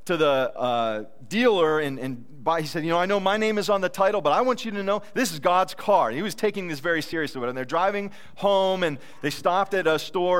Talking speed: 265 wpm